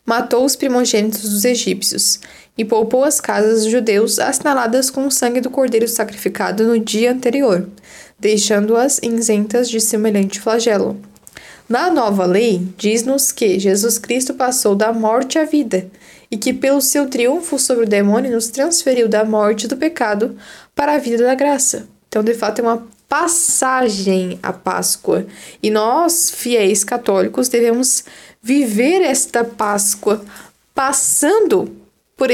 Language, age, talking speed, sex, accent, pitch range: Portuguese, 10-29, 140 wpm, female, Brazilian, 215-265 Hz